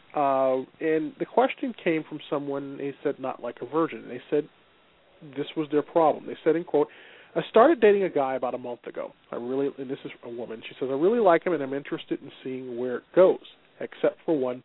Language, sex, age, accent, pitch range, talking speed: English, male, 40-59, American, 135-180 Hz, 230 wpm